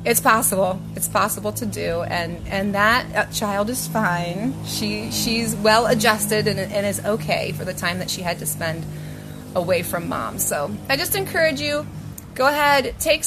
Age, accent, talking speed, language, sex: 30-49, American, 175 wpm, English, female